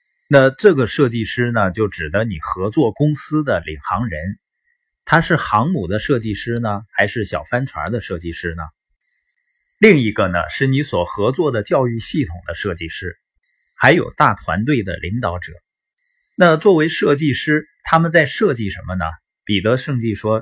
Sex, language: male, Chinese